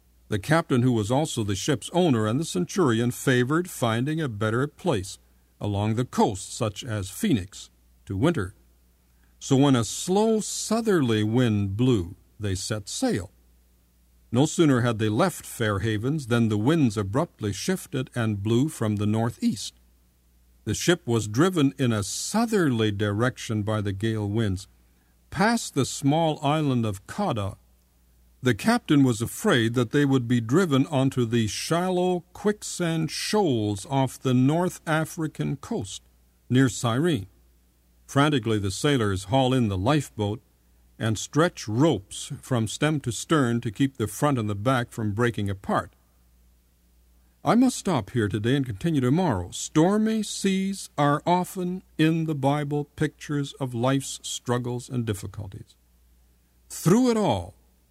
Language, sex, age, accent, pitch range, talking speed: English, male, 60-79, American, 95-150 Hz, 140 wpm